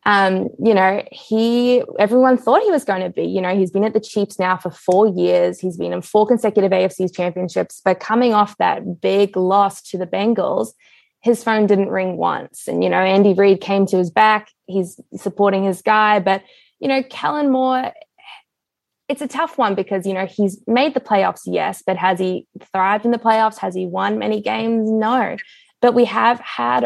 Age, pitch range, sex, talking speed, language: 20-39, 185-225 Hz, female, 200 wpm, English